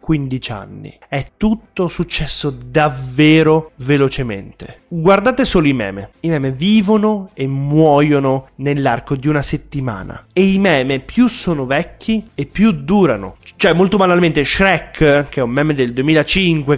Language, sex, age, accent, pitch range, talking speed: Italian, male, 30-49, native, 135-185 Hz, 140 wpm